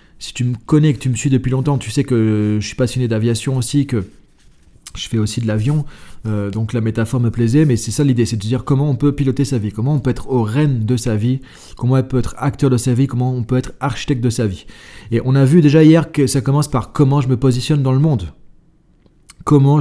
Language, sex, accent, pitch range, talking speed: French, male, French, 120-145 Hz, 260 wpm